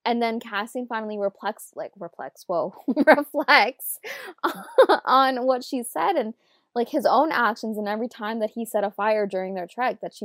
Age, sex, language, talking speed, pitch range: 20-39, female, English, 175 wpm, 195-235 Hz